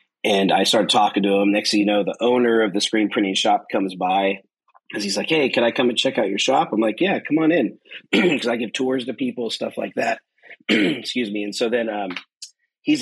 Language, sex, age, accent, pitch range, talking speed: English, male, 40-59, American, 105-130 Hz, 245 wpm